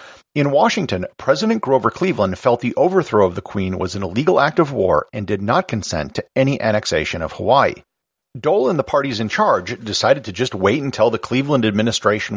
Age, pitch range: 40-59, 105-145 Hz